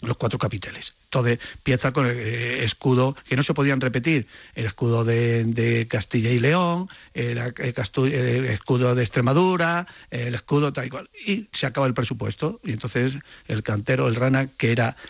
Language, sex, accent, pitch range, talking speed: Spanish, male, Spanish, 120-155 Hz, 175 wpm